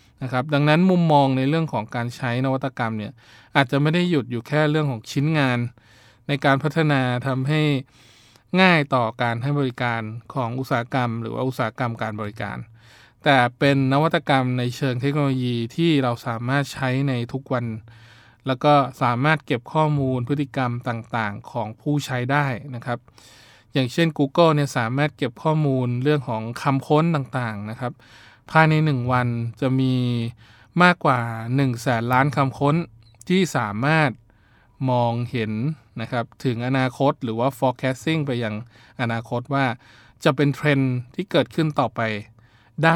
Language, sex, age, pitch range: Thai, male, 20-39, 115-140 Hz